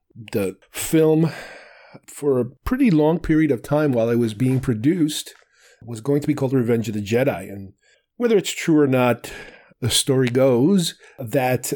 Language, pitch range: English, 110-145 Hz